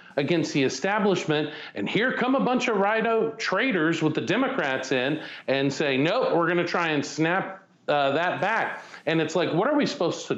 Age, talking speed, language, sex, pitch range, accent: 40-59, 210 wpm, English, male, 135-190 Hz, American